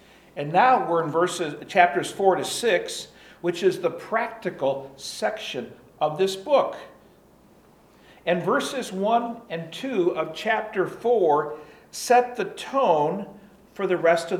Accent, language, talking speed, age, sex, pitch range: American, English, 135 wpm, 50-69, male, 135-200 Hz